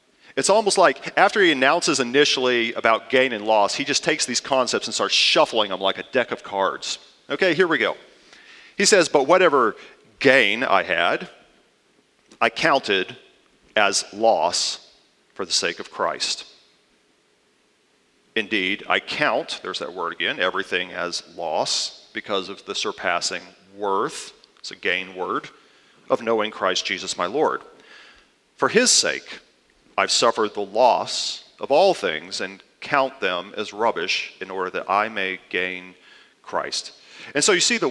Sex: male